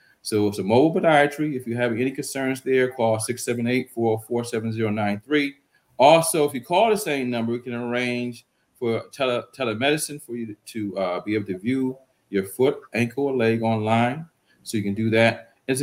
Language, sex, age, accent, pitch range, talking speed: English, male, 40-59, American, 120-150 Hz, 180 wpm